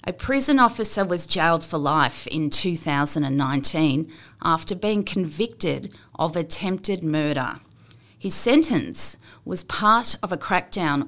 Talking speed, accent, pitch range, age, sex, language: 120 wpm, Australian, 140-190 Hz, 40-59, female, English